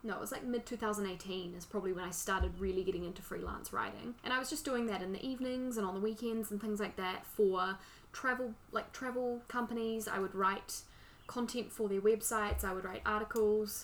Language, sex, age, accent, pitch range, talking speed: English, female, 10-29, Australian, 190-230 Hz, 215 wpm